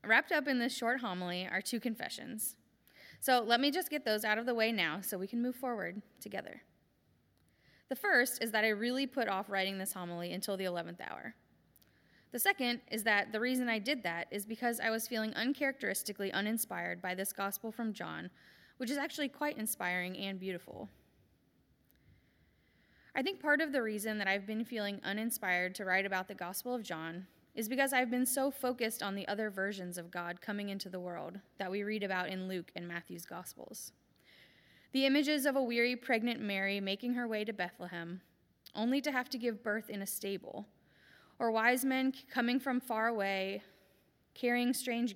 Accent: American